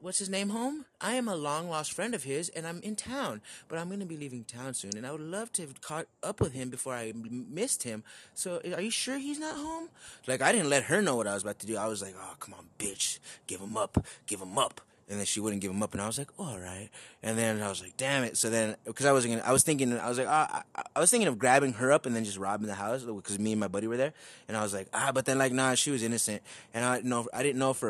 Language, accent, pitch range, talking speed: English, American, 110-150 Hz, 310 wpm